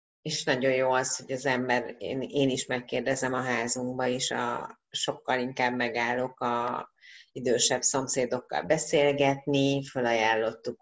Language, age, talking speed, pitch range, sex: Hungarian, 30-49, 130 wpm, 125-140 Hz, female